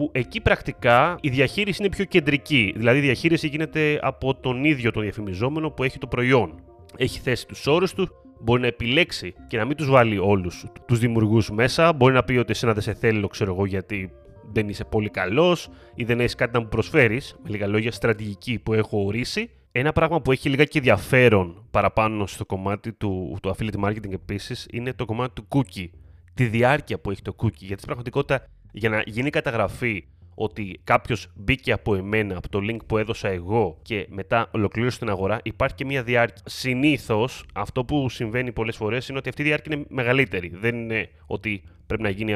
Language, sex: Greek, male